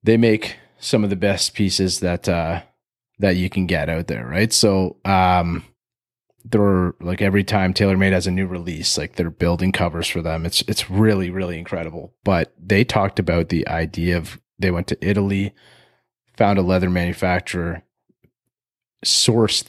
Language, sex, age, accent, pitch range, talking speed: English, male, 30-49, American, 90-100 Hz, 170 wpm